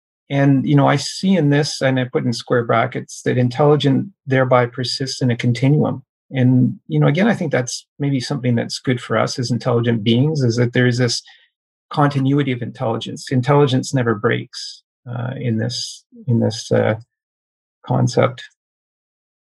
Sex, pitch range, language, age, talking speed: male, 115-140 Hz, English, 40-59, 165 wpm